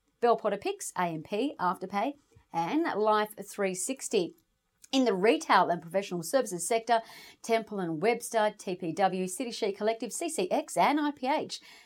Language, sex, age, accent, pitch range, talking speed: English, female, 40-59, Australian, 185-255 Hz, 115 wpm